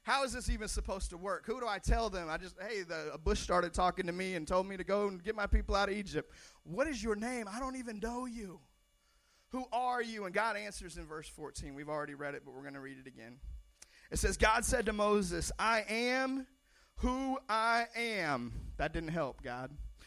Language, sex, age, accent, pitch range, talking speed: English, male, 30-49, American, 150-230 Hz, 230 wpm